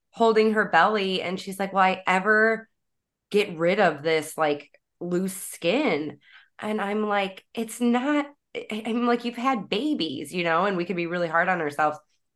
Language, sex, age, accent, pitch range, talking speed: English, female, 20-39, American, 170-225 Hz, 175 wpm